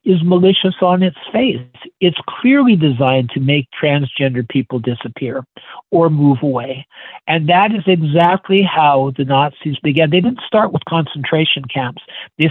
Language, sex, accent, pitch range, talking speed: English, male, American, 145-190 Hz, 150 wpm